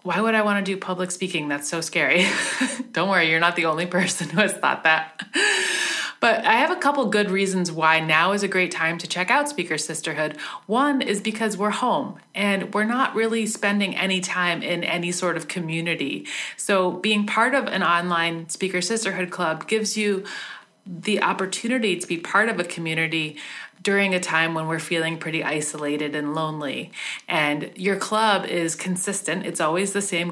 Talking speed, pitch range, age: 190 wpm, 160-205 Hz, 30-49